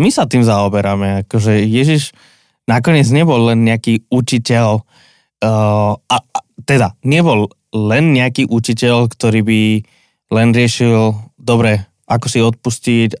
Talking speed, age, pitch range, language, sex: 125 wpm, 20-39, 110-130 Hz, Slovak, male